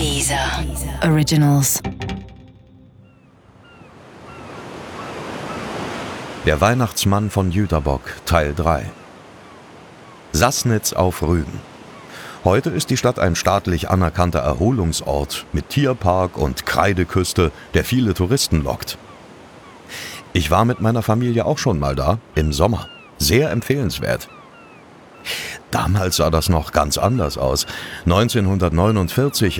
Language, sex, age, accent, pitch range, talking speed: German, male, 40-59, German, 85-115 Hz, 95 wpm